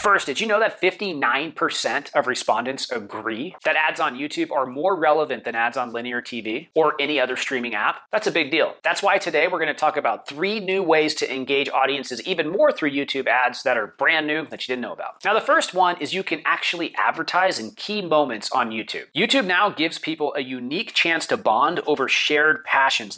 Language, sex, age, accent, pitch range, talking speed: English, male, 30-49, American, 130-185 Hz, 215 wpm